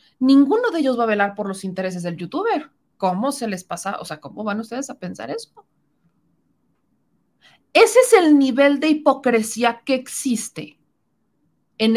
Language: Spanish